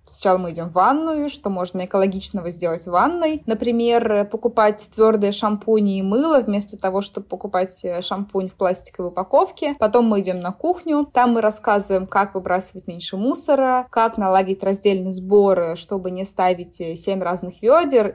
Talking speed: 150 wpm